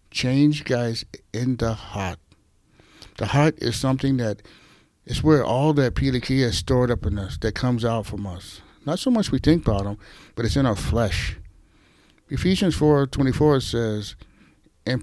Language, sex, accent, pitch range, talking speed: English, male, American, 105-135 Hz, 165 wpm